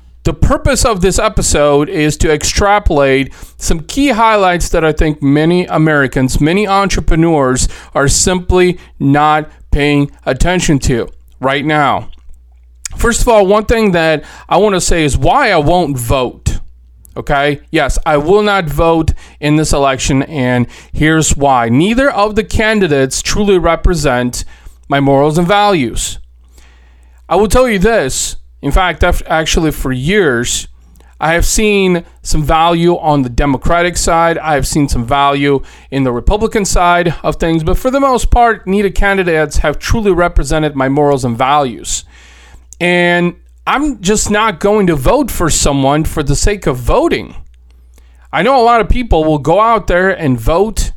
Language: English